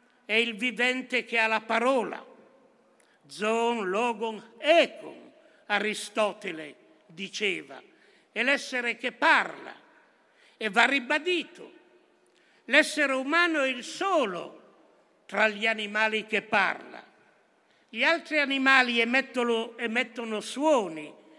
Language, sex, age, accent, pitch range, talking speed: Italian, male, 60-79, native, 220-270 Hz, 100 wpm